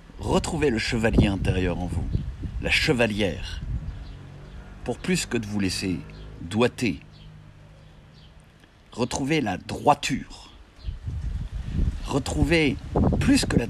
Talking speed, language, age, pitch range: 95 wpm, French, 60-79, 85-120 Hz